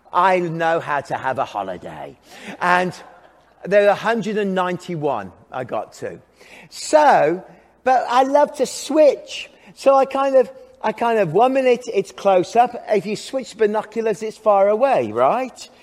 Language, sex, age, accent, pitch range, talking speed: English, male, 40-59, British, 180-250 Hz, 150 wpm